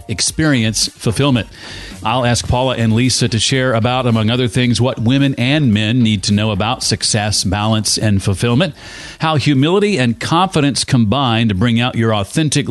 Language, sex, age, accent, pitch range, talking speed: English, male, 40-59, American, 105-135 Hz, 165 wpm